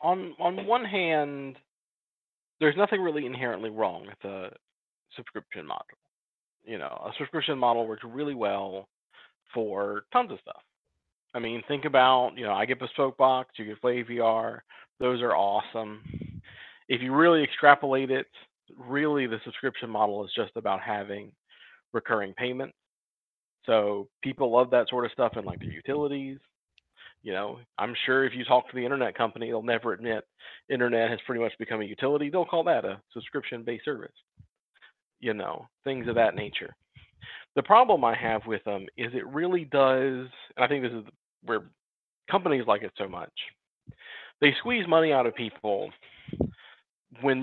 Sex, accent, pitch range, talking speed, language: male, American, 115-140 Hz, 160 wpm, English